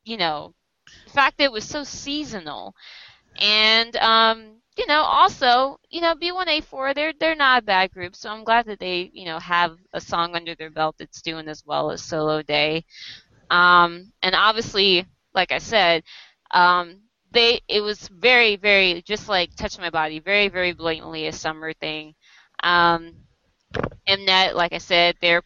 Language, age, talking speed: English, 20-39, 170 wpm